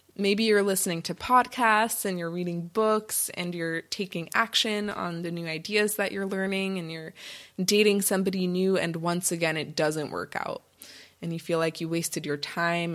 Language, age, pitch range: English, 20-39, 170-205 Hz